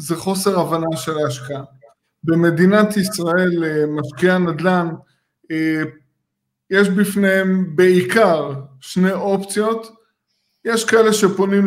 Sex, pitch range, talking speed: male, 165-205 Hz, 85 wpm